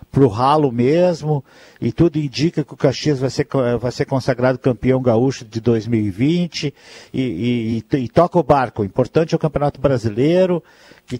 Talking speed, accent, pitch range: 165 wpm, Brazilian, 120-160 Hz